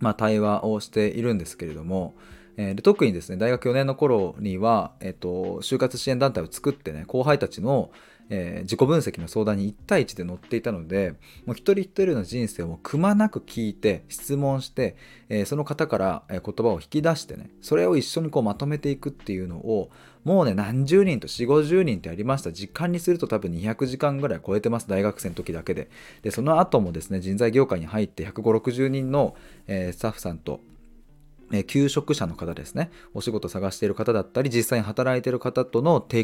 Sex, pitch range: male, 95-135 Hz